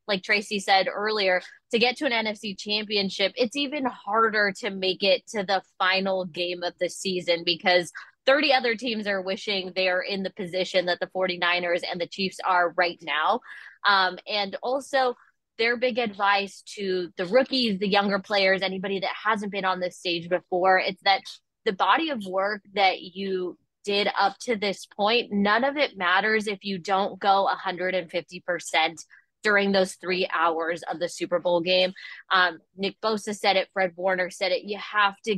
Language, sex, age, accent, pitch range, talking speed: English, female, 20-39, American, 185-215 Hz, 180 wpm